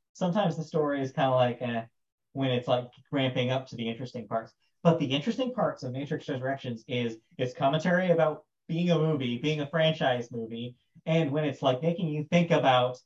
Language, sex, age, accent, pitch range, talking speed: English, male, 30-49, American, 130-170 Hz, 200 wpm